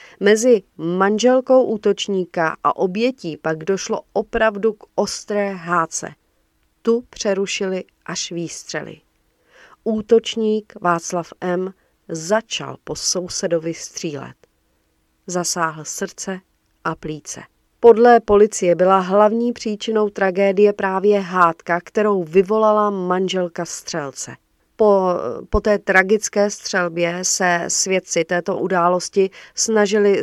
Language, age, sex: Czech, 40-59, female